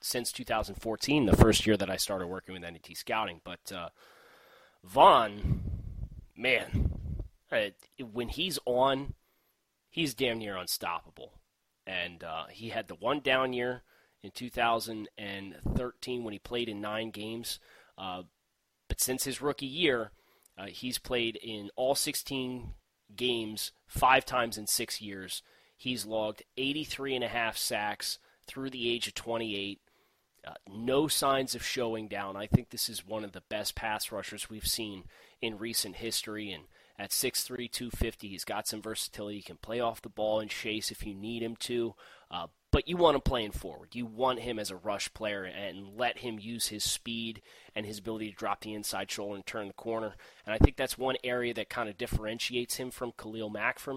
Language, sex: English, male